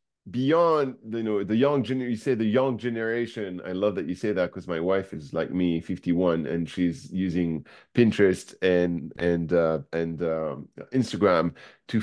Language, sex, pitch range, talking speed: English, male, 90-135 Hz, 170 wpm